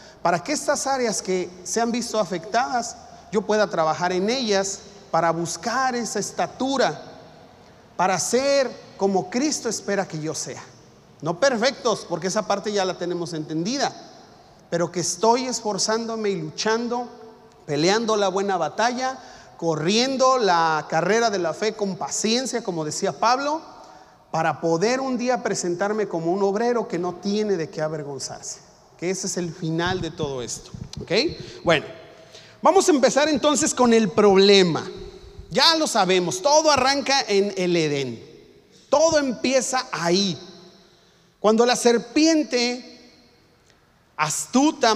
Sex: male